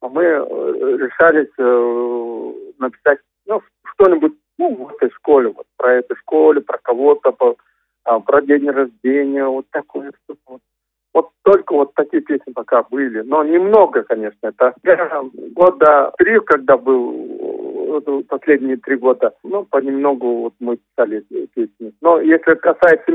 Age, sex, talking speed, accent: 50-69, male, 130 wpm, native